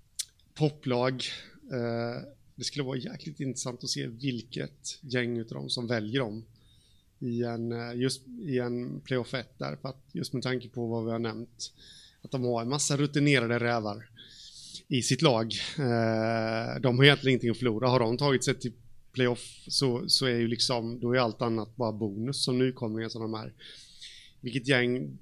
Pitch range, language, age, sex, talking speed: 115-135 Hz, Swedish, 30-49, male, 170 wpm